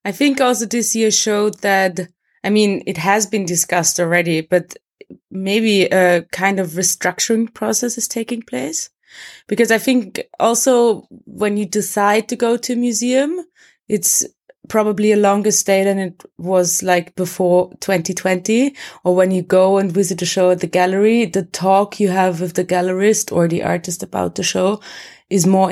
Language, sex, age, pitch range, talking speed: English, female, 20-39, 180-210 Hz, 170 wpm